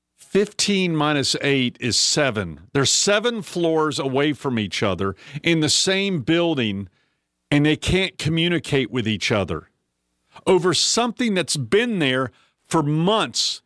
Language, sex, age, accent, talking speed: English, male, 50-69, American, 130 wpm